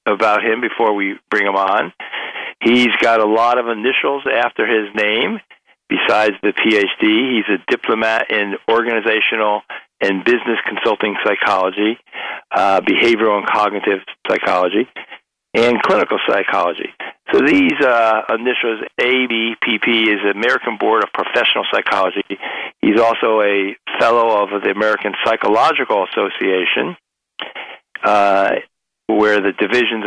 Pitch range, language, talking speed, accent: 105-125 Hz, English, 120 wpm, American